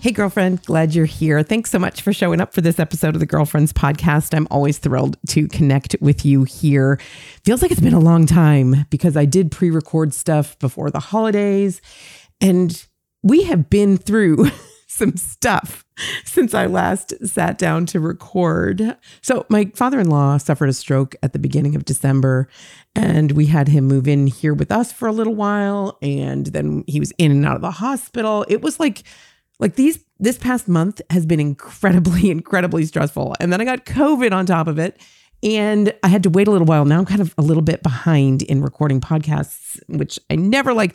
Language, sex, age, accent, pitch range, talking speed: English, female, 40-59, American, 145-195 Hz, 195 wpm